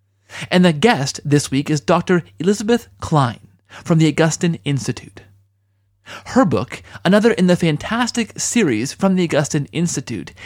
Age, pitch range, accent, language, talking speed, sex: 30-49, 115-185 Hz, American, English, 140 wpm, male